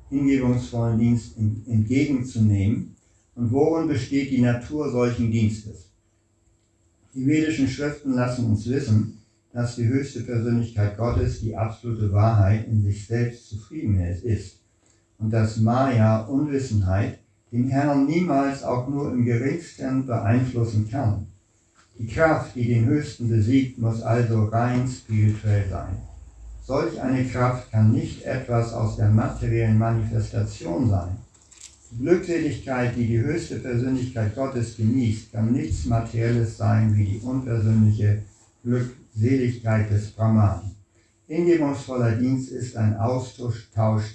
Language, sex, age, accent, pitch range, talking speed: German, male, 60-79, German, 110-125 Hz, 120 wpm